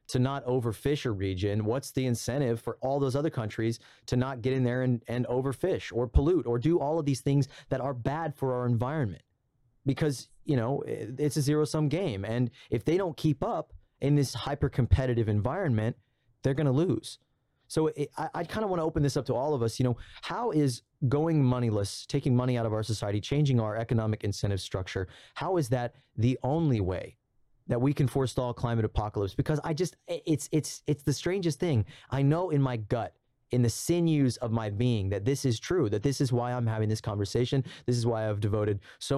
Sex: male